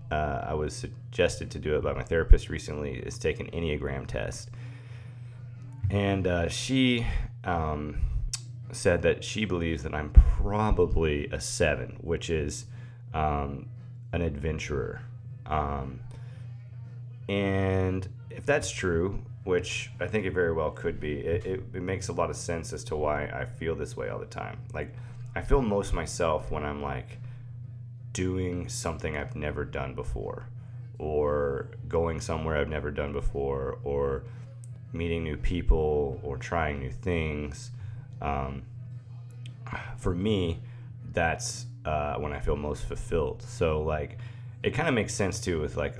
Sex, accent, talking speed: male, American, 150 wpm